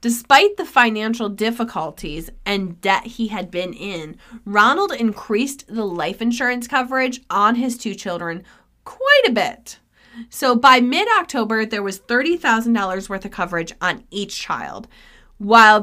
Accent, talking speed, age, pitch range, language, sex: American, 135 wpm, 30-49, 190-250 Hz, English, female